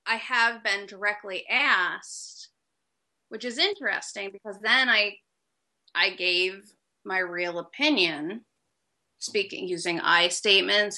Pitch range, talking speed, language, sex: 195-250 Hz, 110 wpm, English, female